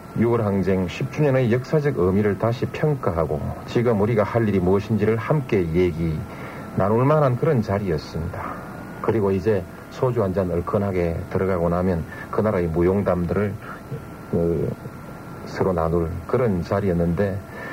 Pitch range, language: 95-120 Hz, Korean